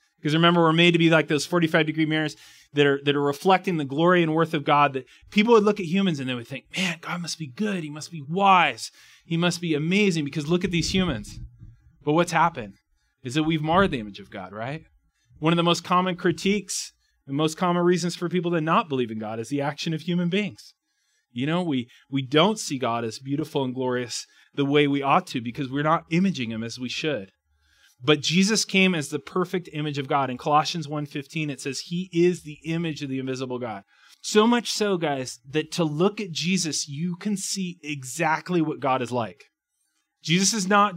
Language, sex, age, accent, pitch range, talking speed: English, male, 30-49, American, 140-180 Hz, 220 wpm